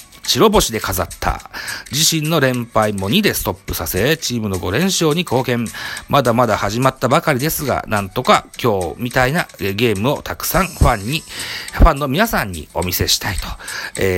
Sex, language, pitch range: male, Japanese, 90-135 Hz